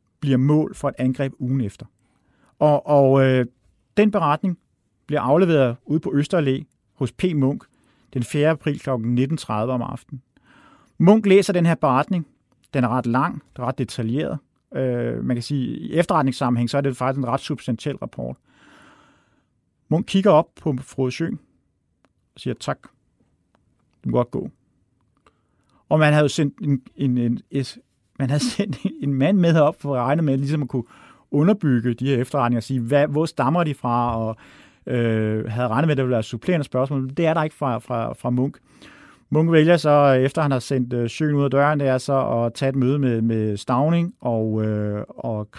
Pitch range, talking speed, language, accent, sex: 120-150 Hz, 190 wpm, Danish, native, male